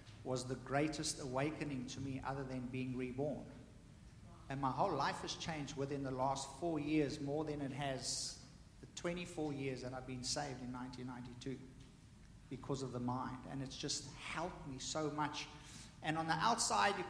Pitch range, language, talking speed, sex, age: 130-155 Hz, English, 175 wpm, male, 50-69